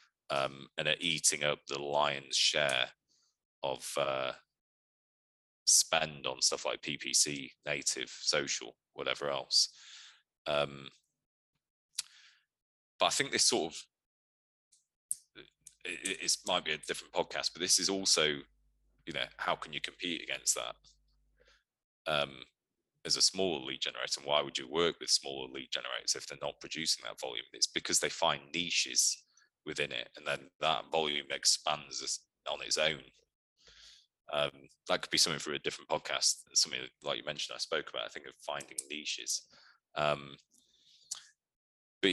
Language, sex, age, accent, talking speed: English, male, 30-49, British, 150 wpm